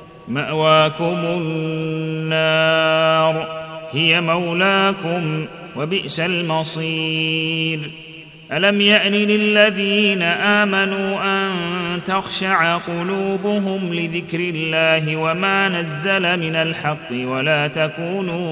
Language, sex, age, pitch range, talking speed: Arabic, male, 30-49, 160-195 Hz, 70 wpm